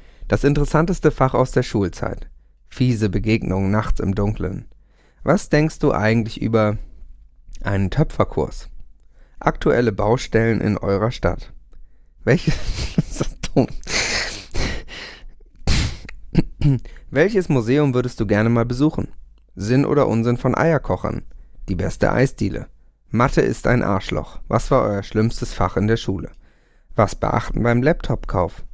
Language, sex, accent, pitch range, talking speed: German, male, German, 100-135 Hz, 115 wpm